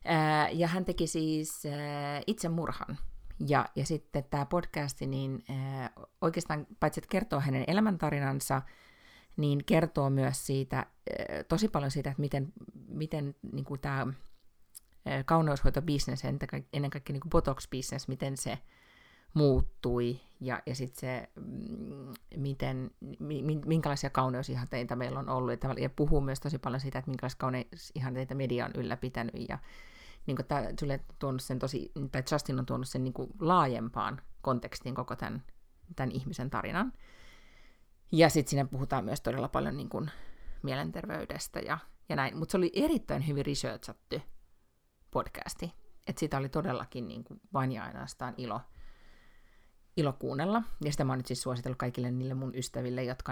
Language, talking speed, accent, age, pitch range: Finnish, 140 wpm, native, 30-49, 130-155 Hz